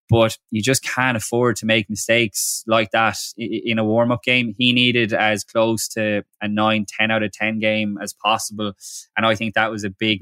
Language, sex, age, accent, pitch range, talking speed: English, male, 20-39, Irish, 105-120 Hz, 200 wpm